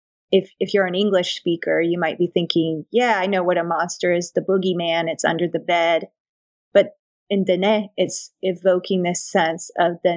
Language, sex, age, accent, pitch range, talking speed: English, female, 30-49, American, 170-190 Hz, 190 wpm